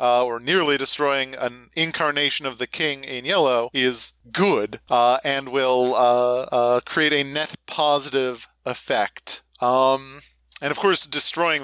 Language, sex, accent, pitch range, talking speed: English, male, American, 125-170 Hz, 145 wpm